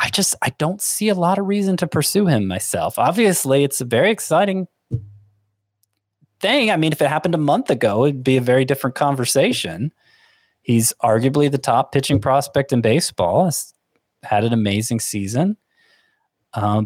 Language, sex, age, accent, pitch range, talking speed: English, male, 20-39, American, 110-145 Hz, 165 wpm